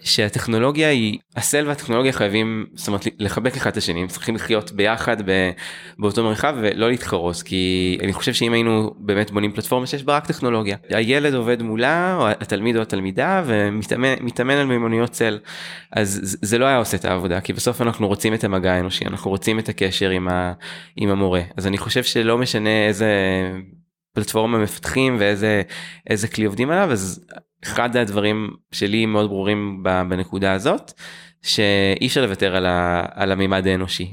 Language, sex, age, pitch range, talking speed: Hebrew, male, 20-39, 95-115 Hz, 160 wpm